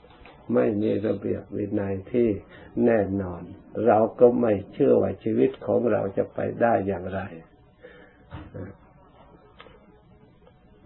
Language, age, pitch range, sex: Thai, 60-79, 100-120 Hz, male